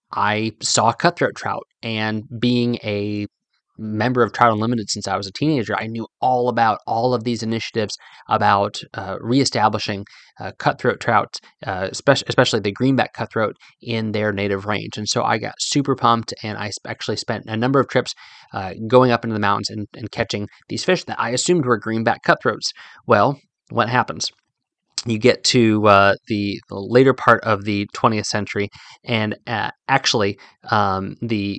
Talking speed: 165 wpm